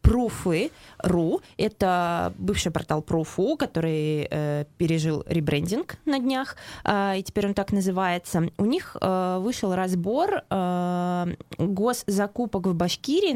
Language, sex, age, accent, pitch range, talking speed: Russian, female, 20-39, native, 175-210 Hz, 115 wpm